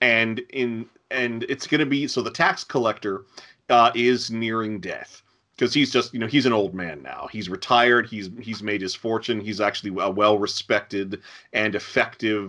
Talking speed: 185 wpm